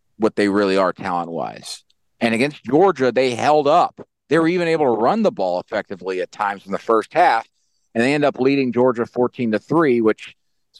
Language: English